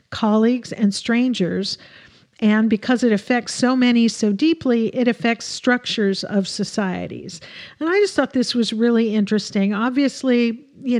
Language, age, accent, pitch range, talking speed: English, 50-69, American, 200-245 Hz, 140 wpm